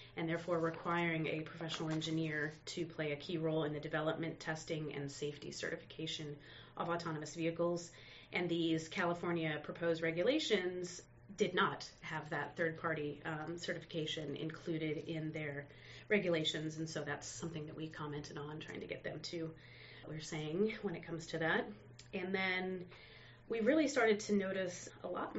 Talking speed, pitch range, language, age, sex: 155 wpm, 155-175 Hz, English, 30-49, female